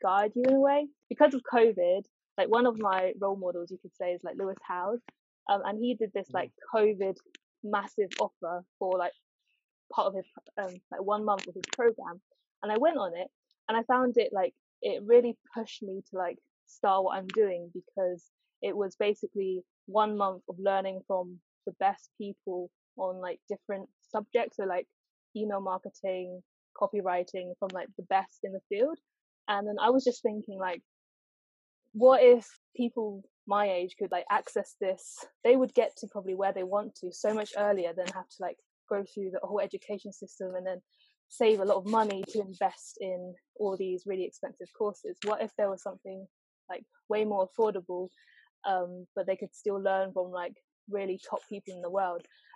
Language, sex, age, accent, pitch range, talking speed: English, female, 10-29, British, 185-220 Hz, 190 wpm